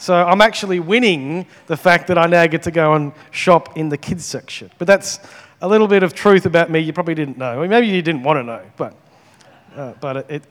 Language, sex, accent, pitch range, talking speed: English, male, Australian, 140-175 Hz, 235 wpm